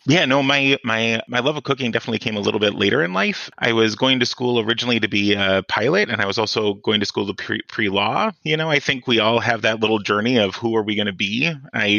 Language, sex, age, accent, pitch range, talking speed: English, male, 30-49, American, 105-120 Hz, 270 wpm